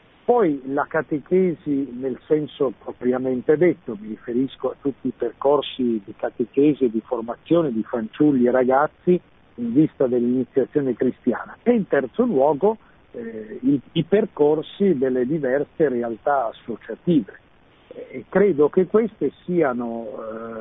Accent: native